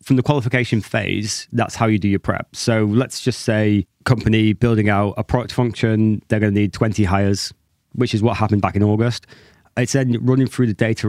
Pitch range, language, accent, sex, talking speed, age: 105-125 Hz, English, British, male, 205 wpm, 20-39